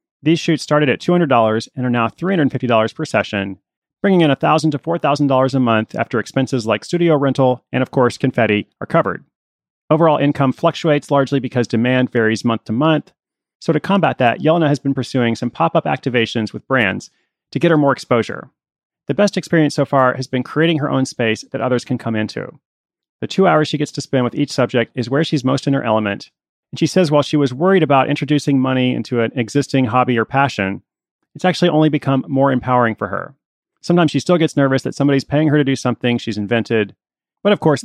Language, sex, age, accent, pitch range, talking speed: English, male, 30-49, American, 120-155 Hz, 210 wpm